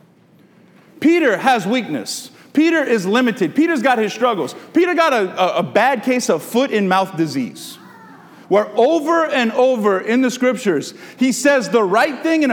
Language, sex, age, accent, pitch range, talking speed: English, male, 40-59, American, 200-265 Hz, 160 wpm